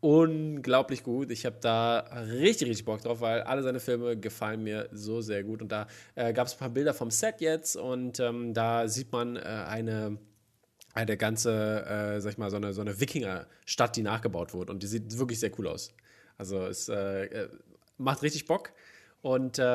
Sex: male